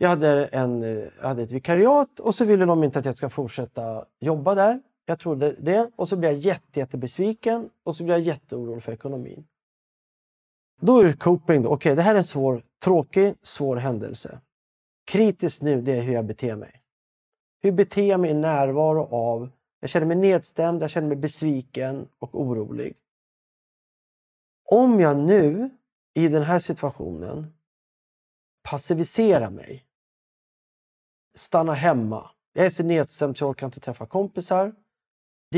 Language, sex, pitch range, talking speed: Swedish, male, 130-175 Hz, 155 wpm